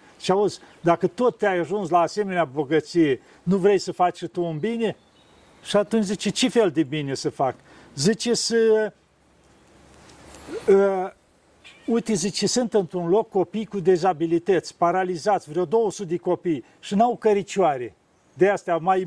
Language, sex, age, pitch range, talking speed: Romanian, male, 50-69, 180-220 Hz, 150 wpm